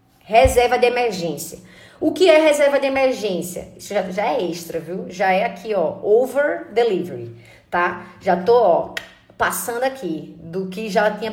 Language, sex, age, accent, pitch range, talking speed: Portuguese, female, 20-39, Brazilian, 210-300 Hz, 165 wpm